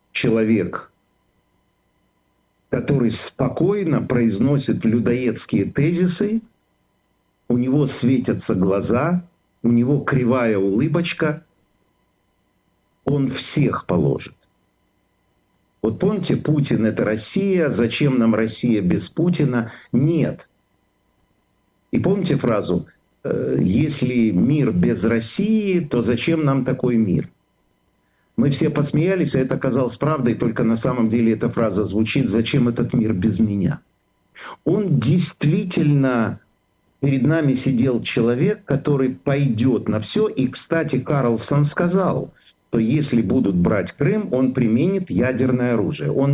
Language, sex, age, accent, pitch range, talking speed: Russian, male, 50-69, native, 115-145 Hz, 105 wpm